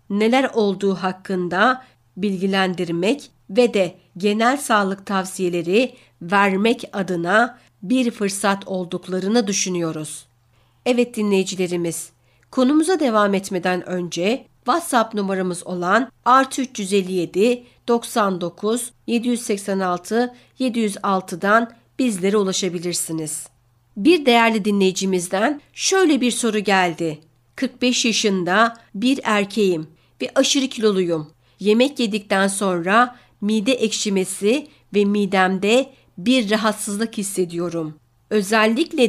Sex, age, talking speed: female, 60-79, 85 wpm